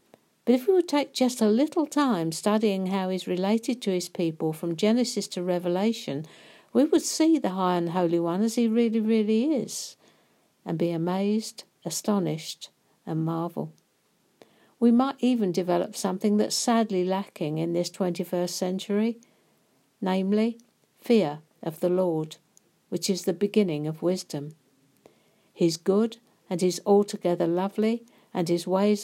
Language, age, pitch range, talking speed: English, 60-79, 170-215 Hz, 145 wpm